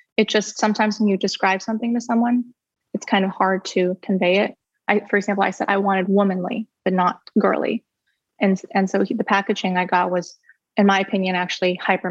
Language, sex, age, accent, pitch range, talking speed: English, female, 20-39, American, 190-220 Hz, 205 wpm